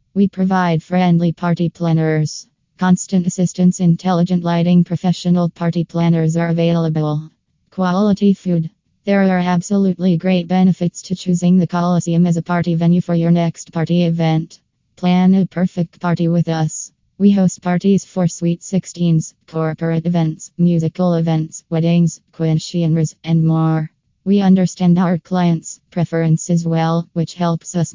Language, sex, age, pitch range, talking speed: English, female, 20-39, 165-180 Hz, 135 wpm